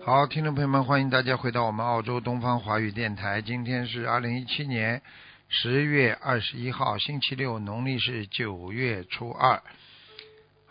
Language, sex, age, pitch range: Chinese, male, 50-69, 100-130 Hz